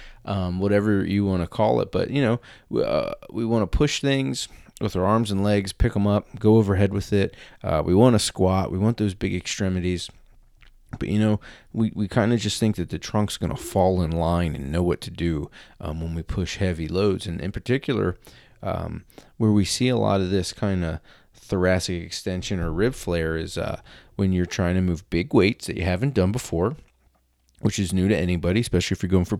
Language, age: English, 30-49